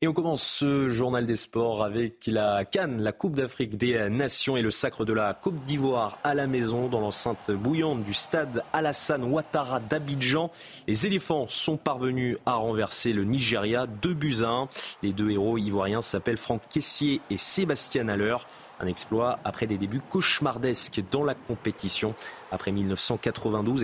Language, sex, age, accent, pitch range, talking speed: French, male, 30-49, French, 105-145 Hz, 165 wpm